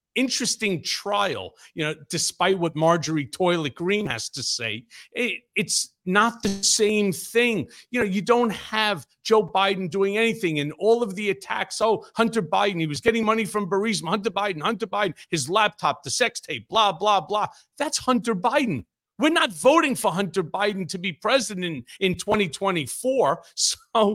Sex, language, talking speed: male, English, 160 wpm